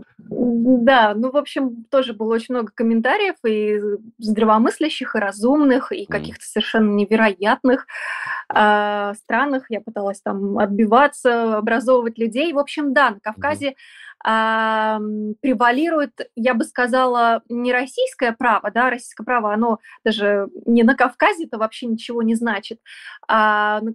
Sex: female